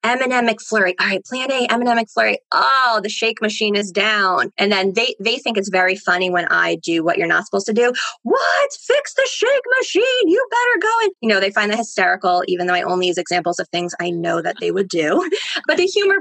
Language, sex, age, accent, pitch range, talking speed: English, female, 20-39, American, 190-240 Hz, 235 wpm